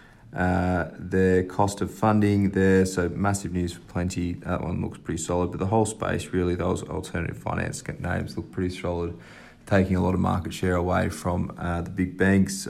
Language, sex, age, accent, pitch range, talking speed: English, male, 30-49, Australian, 85-95 Hz, 190 wpm